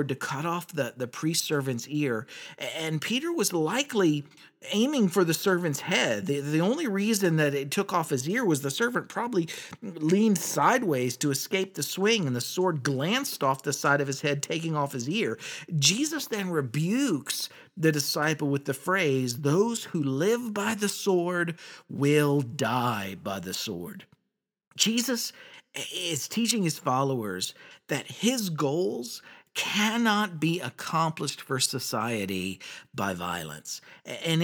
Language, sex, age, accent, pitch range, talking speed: English, male, 50-69, American, 125-175 Hz, 150 wpm